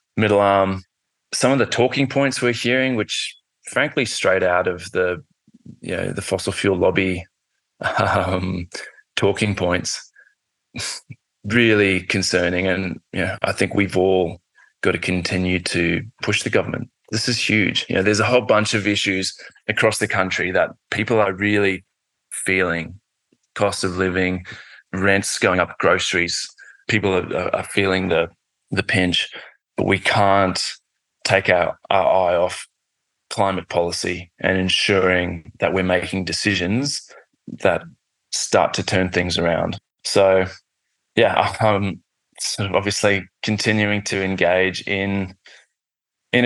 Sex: male